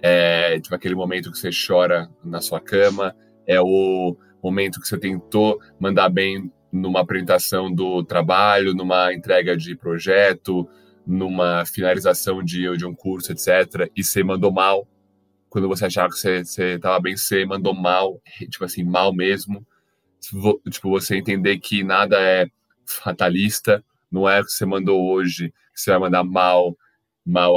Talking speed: 150 wpm